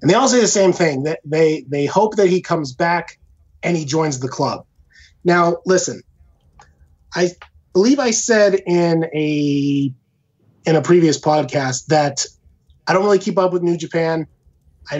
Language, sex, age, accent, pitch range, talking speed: English, male, 30-49, American, 140-180 Hz, 170 wpm